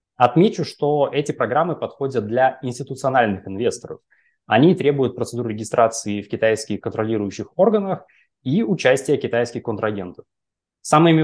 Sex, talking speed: male, 110 wpm